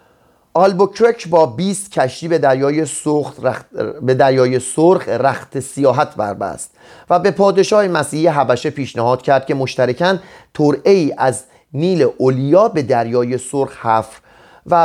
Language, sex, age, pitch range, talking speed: Persian, male, 30-49, 130-165 Hz, 130 wpm